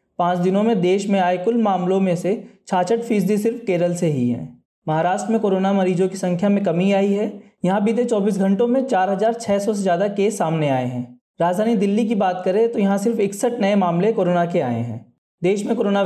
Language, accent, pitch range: Hindi, native, 175-220 Hz